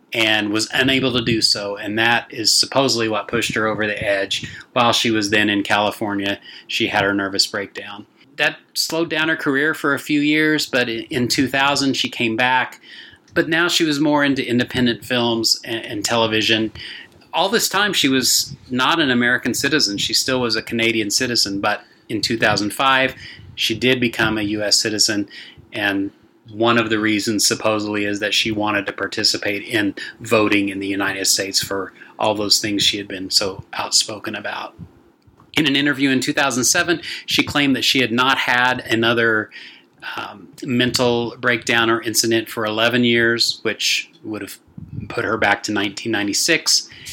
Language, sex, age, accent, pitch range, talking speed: English, male, 30-49, American, 105-130 Hz, 170 wpm